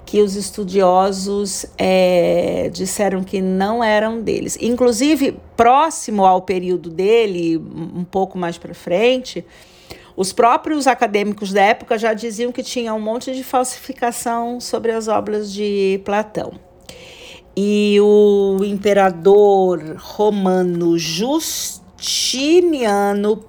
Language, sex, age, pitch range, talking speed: Portuguese, female, 50-69, 185-230 Hz, 105 wpm